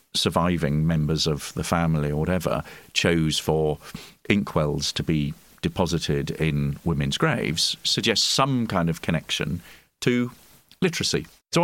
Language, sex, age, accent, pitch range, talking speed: English, male, 40-59, British, 80-125 Hz, 125 wpm